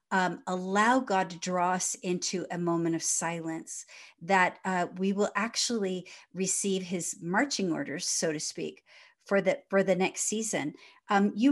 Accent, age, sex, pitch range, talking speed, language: American, 50-69, female, 180-210 Hz, 160 wpm, English